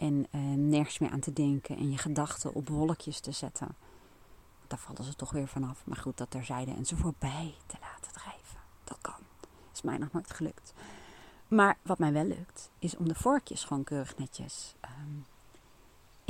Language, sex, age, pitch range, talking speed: Dutch, female, 30-49, 140-210 Hz, 180 wpm